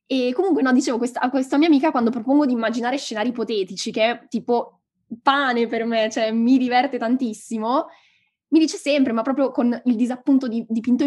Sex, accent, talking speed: female, native, 185 wpm